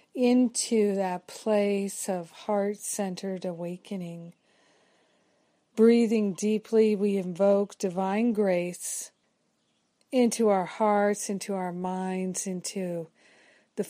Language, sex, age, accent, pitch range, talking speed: English, female, 50-69, American, 190-215 Hz, 85 wpm